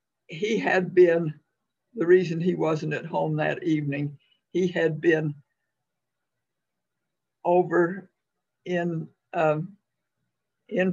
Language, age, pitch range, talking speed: English, 60-79, 150-170 Hz, 100 wpm